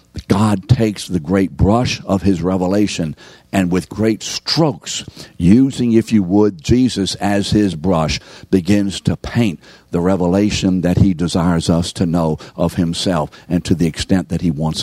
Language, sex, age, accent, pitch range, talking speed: English, male, 60-79, American, 80-105 Hz, 160 wpm